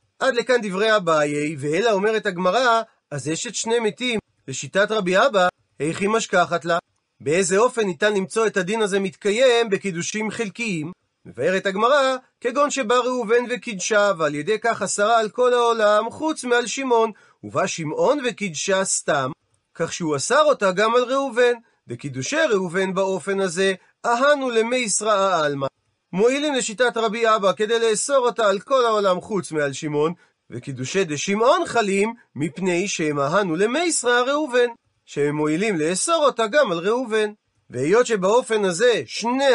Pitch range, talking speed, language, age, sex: 185-240 Hz, 140 wpm, Hebrew, 40-59, male